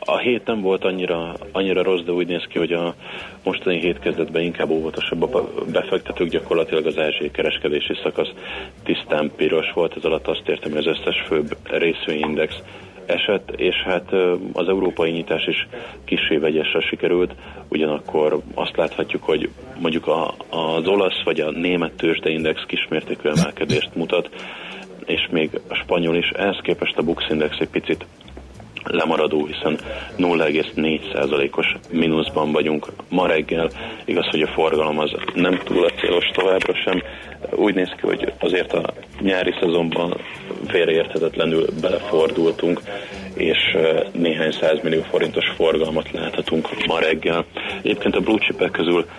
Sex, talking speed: male, 135 wpm